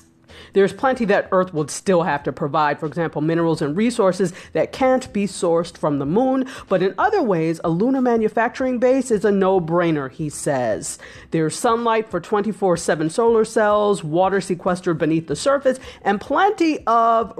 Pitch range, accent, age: 155-210 Hz, American, 40-59